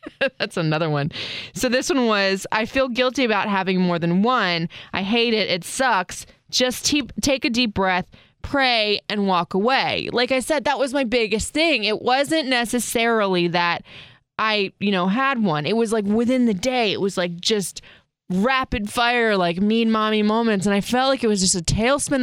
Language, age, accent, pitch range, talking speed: English, 20-39, American, 190-255 Hz, 190 wpm